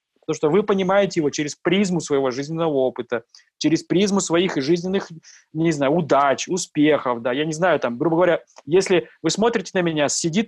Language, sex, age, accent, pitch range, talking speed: Russian, male, 20-39, native, 160-200 Hz, 175 wpm